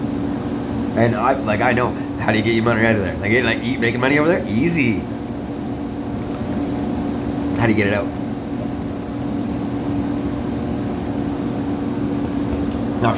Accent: American